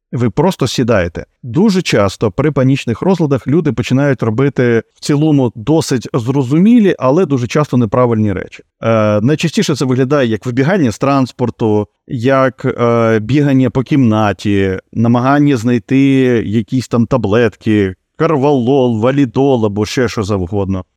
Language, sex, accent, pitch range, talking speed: Ukrainian, male, native, 110-145 Hz, 125 wpm